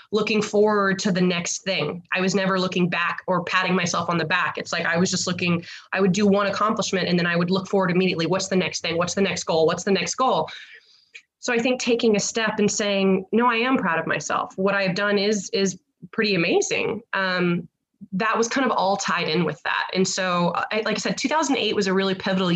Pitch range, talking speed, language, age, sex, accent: 170-205 Hz, 235 wpm, English, 20-39, female, American